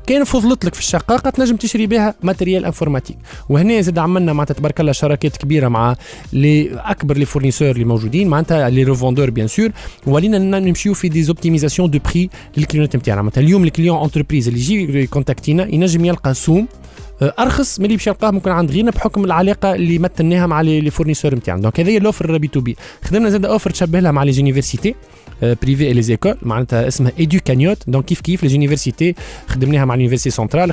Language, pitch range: Arabic, 135-185 Hz